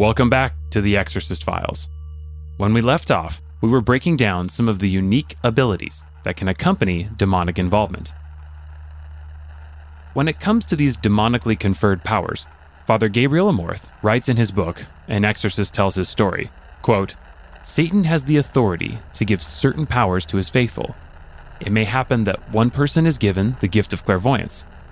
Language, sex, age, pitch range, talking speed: English, male, 30-49, 90-130 Hz, 165 wpm